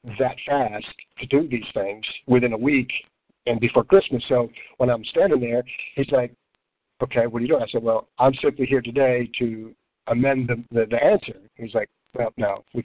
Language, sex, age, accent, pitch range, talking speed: English, male, 50-69, American, 115-135 Hz, 195 wpm